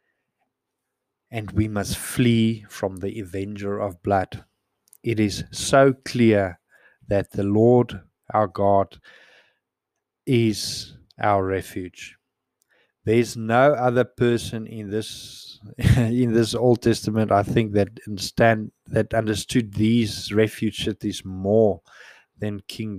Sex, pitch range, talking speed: male, 100-115 Hz, 115 wpm